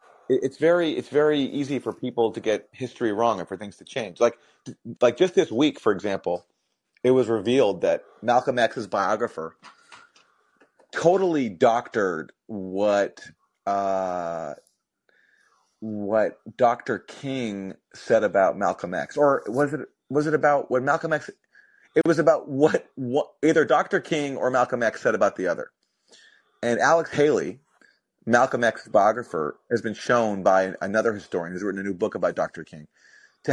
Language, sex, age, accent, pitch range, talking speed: English, male, 30-49, American, 100-145 Hz, 155 wpm